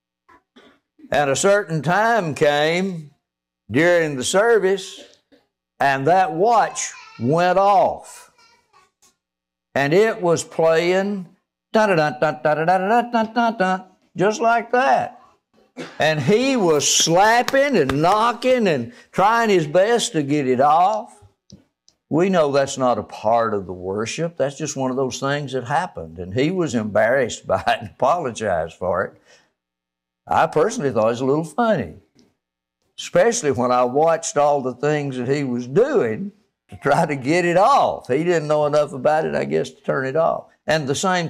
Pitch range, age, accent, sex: 125-190 Hz, 60-79, American, male